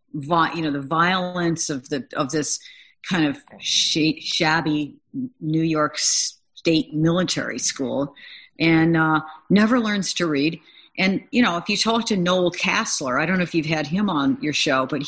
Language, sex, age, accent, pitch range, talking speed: English, female, 50-69, American, 155-200 Hz, 165 wpm